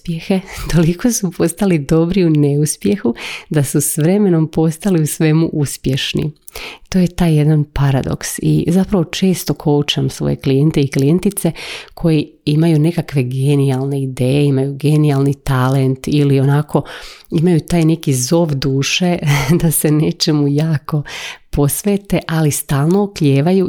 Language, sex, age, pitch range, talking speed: Croatian, female, 30-49, 140-165 Hz, 125 wpm